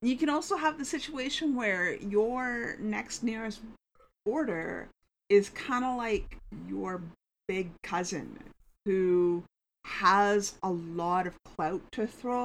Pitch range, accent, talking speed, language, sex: 185-245 Hz, American, 125 wpm, English, female